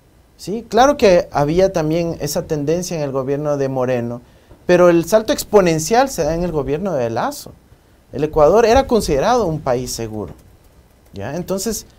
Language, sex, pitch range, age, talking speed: Spanish, male, 140-220 Hz, 40-59, 155 wpm